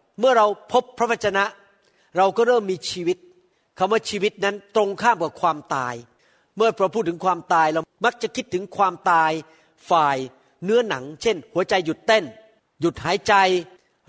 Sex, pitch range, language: male, 180-230 Hz, Thai